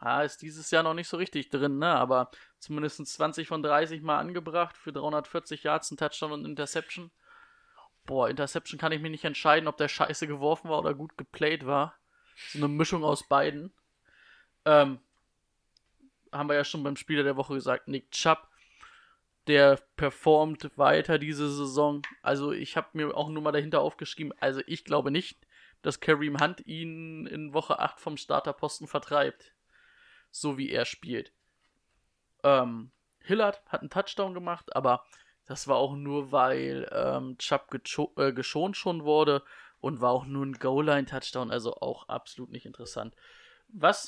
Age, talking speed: 20-39, 165 wpm